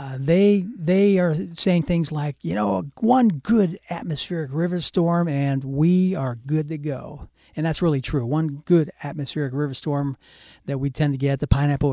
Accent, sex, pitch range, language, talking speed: American, male, 140-180 Hz, English, 180 wpm